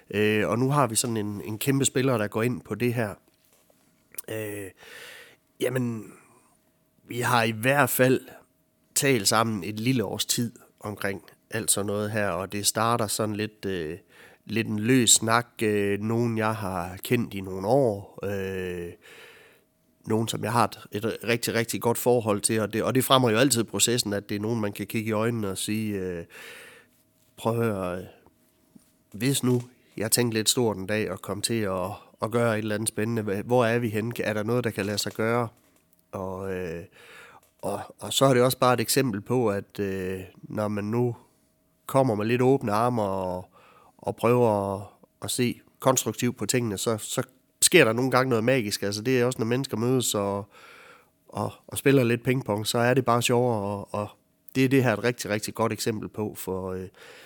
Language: Danish